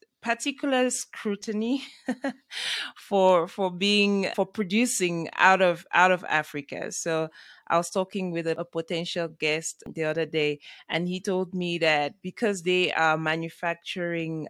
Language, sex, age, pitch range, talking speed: English, female, 20-39, 160-190 Hz, 135 wpm